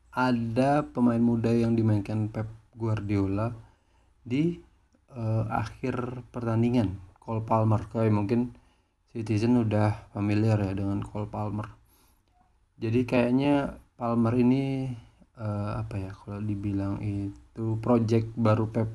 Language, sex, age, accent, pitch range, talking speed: Indonesian, male, 30-49, native, 100-115 Hz, 110 wpm